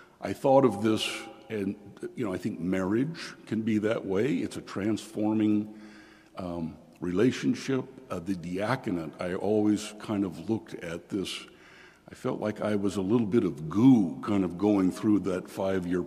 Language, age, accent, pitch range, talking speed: English, 60-79, American, 95-125 Hz, 170 wpm